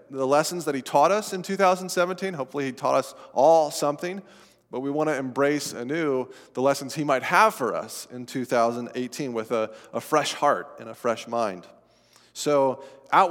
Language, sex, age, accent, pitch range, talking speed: English, male, 30-49, American, 125-165 Hz, 180 wpm